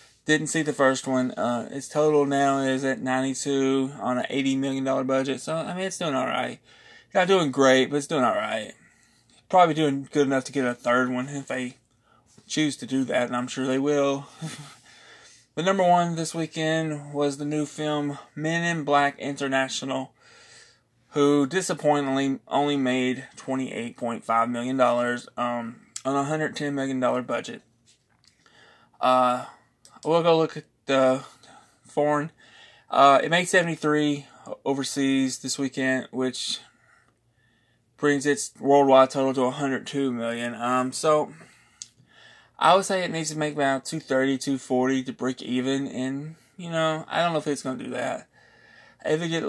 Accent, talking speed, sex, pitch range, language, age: American, 160 wpm, male, 130-150 Hz, English, 20-39